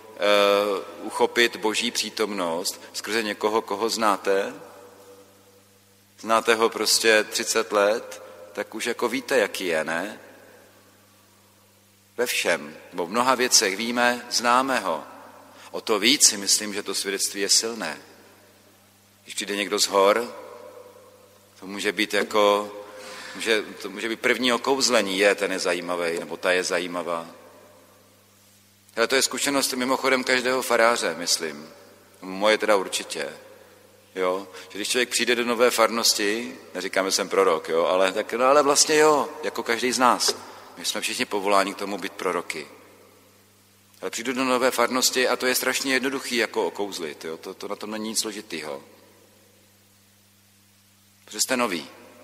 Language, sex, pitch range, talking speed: Czech, male, 100-125 Hz, 145 wpm